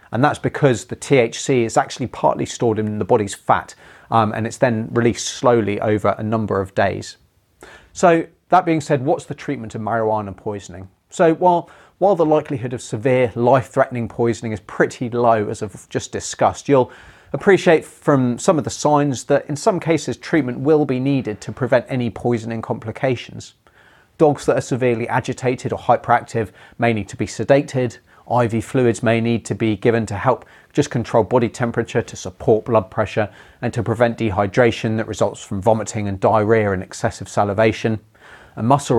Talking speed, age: 175 wpm, 30-49